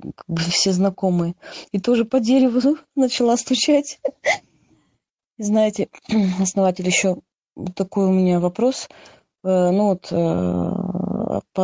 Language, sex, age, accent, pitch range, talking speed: Russian, female, 20-39, native, 180-205 Hz, 115 wpm